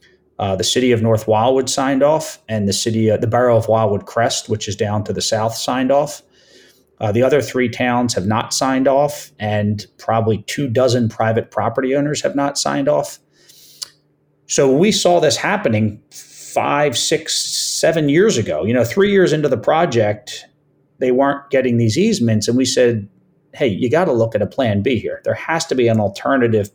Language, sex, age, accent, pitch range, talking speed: English, male, 40-59, American, 110-135 Hz, 195 wpm